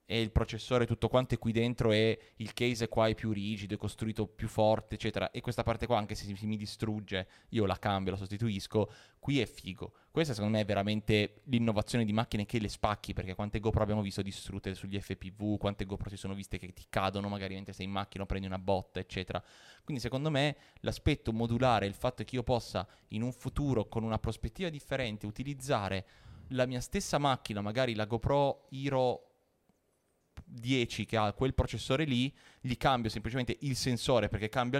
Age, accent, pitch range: 20-39, native, 100-120 Hz